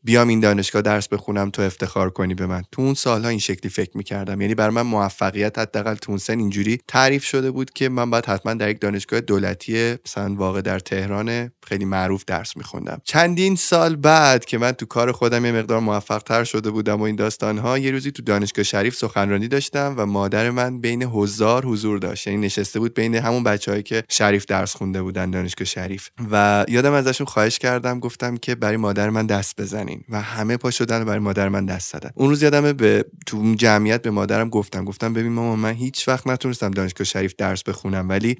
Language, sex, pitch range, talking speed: Persian, male, 100-125 Hz, 205 wpm